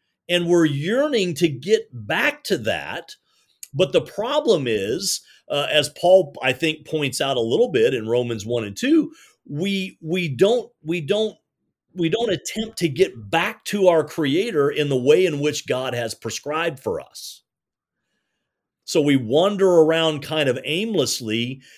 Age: 40-59